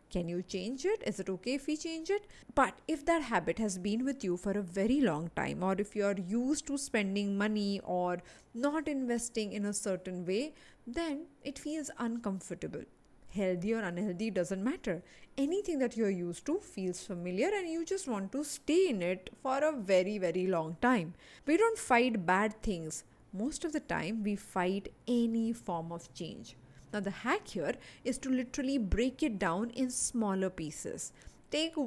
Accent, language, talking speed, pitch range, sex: Indian, English, 185 wpm, 195-290 Hz, female